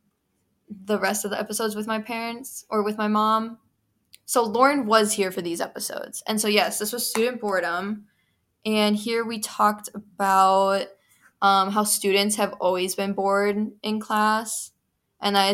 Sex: female